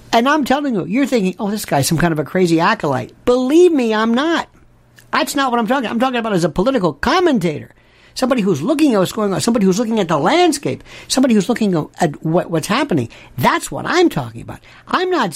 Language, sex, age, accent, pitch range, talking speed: English, male, 60-79, American, 185-250 Hz, 225 wpm